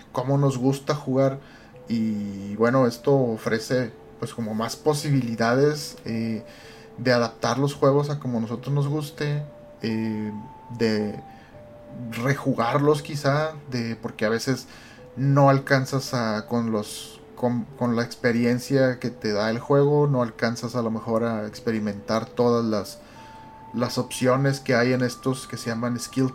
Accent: Mexican